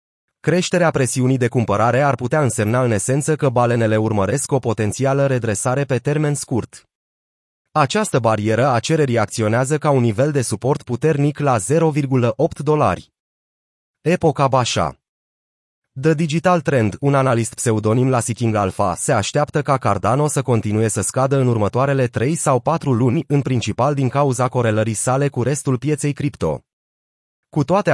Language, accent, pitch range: Romanian, native, 115-145 Hz